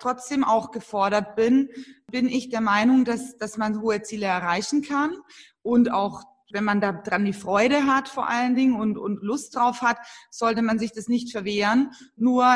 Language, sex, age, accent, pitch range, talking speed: German, female, 20-39, German, 215-255 Hz, 185 wpm